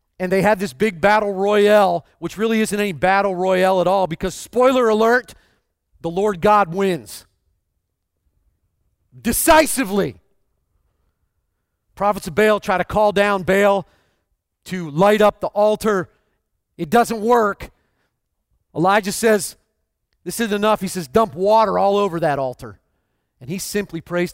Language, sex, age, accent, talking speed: English, male, 40-59, American, 140 wpm